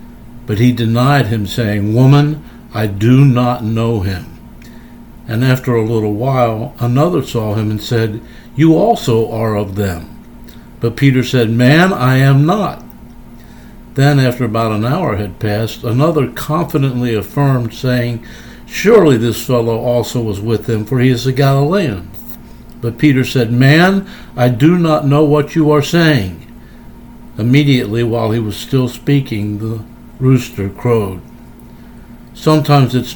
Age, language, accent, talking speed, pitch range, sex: 60-79, English, American, 145 wpm, 115-130 Hz, male